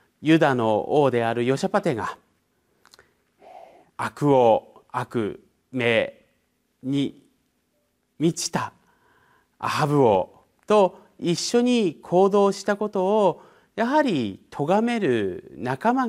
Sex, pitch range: male, 135-225 Hz